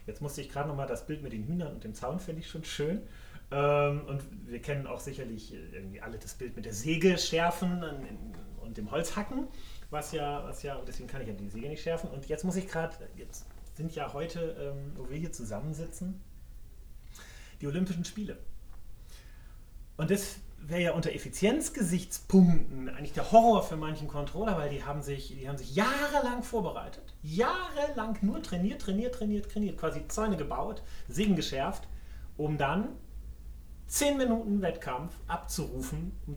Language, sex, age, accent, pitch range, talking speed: German, male, 30-49, German, 110-180 Hz, 170 wpm